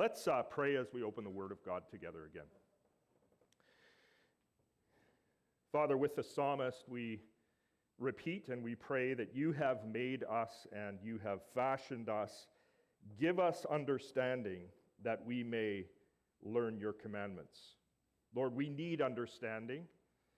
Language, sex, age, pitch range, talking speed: English, male, 40-59, 110-135 Hz, 130 wpm